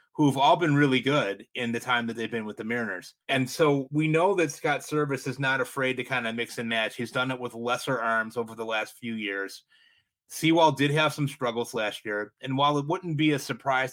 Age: 30-49